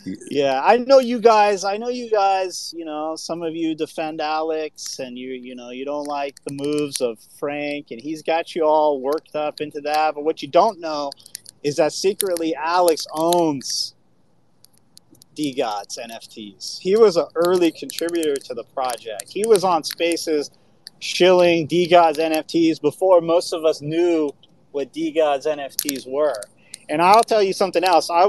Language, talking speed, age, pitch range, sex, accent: English, 175 wpm, 30-49, 145-185 Hz, male, American